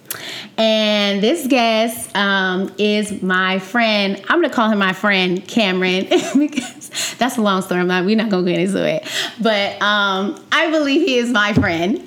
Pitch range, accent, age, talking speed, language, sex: 195-230 Hz, American, 20-39, 185 wpm, English, female